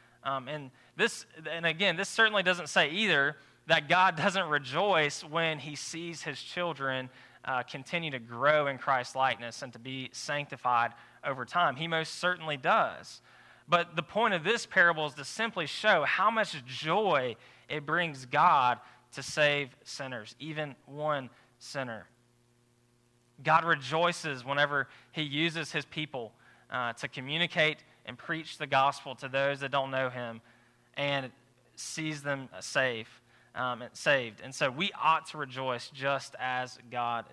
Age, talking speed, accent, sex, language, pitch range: 20-39, 150 wpm, American, male, English, 130-170 Hz